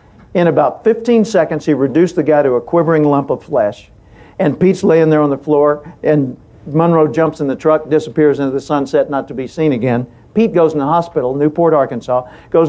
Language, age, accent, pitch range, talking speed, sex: English, 60-79, American, 145-195 Hz, 210 wpm, male